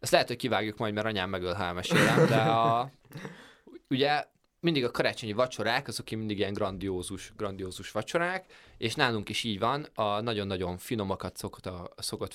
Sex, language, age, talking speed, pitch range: male, Hungarian, 20-39, 160 wpm, 95-130 Hz